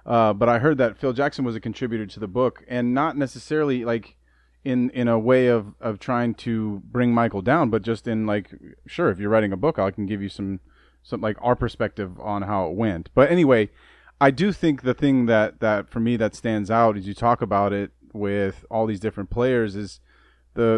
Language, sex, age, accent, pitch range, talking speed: English, male, 30-49, American, 110-130 Hz, 220 wpm